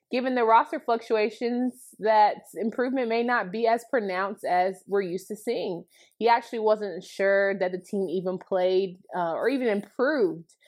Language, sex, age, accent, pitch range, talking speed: English, female, 20-39, American, 180-230 Hz, 165 wpm